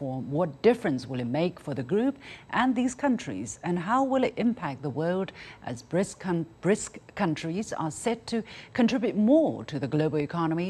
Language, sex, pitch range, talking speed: English, female, 150-195 Hz, 180 wpm